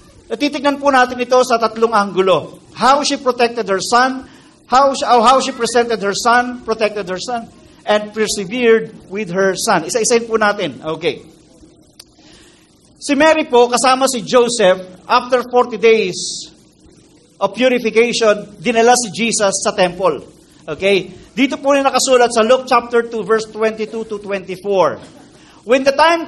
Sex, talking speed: male, 145 wpm